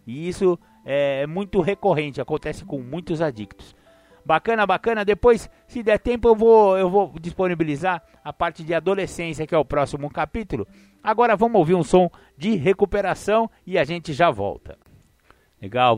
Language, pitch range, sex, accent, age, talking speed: Portuguese, 135-180 Hz, male, Brazilian, 60-79, 160 wpm